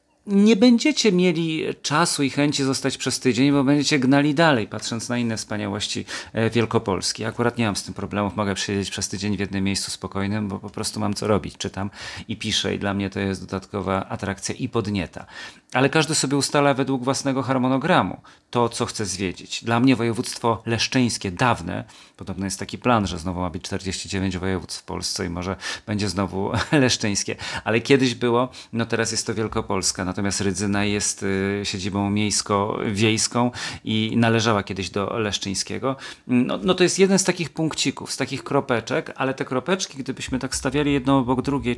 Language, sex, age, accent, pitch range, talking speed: Polish, male, 40-59, native, 100-135 Hz, 170 wpm